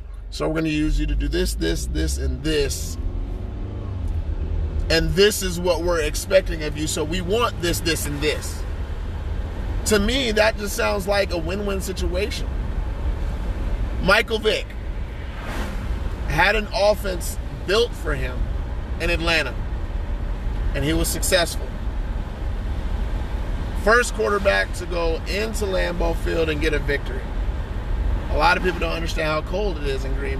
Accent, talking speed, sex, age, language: American, 145 wpm, male, 30-49, English